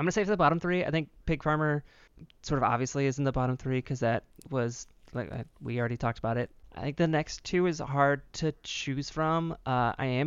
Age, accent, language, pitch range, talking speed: 20-39, American, English, 120-150 Hz, 245 wpm